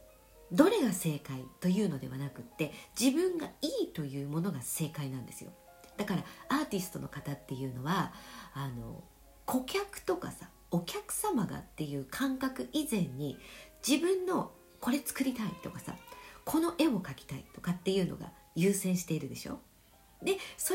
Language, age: Japanese, 50-69